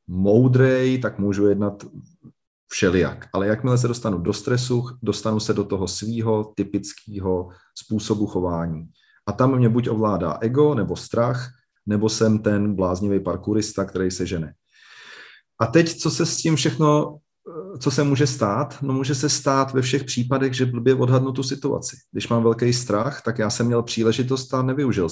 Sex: male